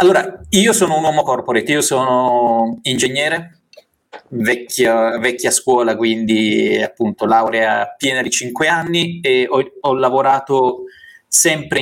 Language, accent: Italian, native